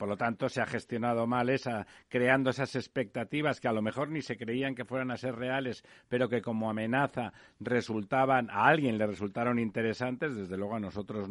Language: Spanish